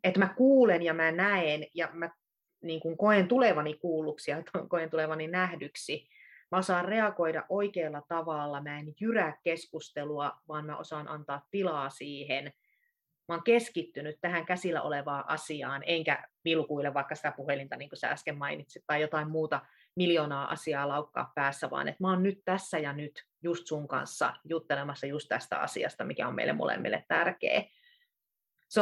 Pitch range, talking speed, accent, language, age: 150-195 Hz, 160 wpm, native, Finnish, 30-49